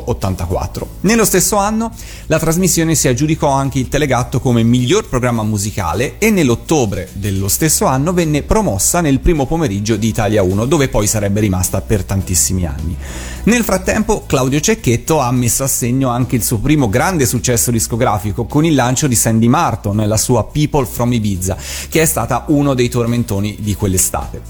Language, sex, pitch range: Italian, male, 110-145 Hz